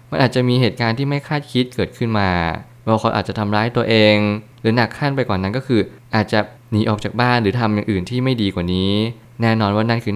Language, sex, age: Thai, male, 20-39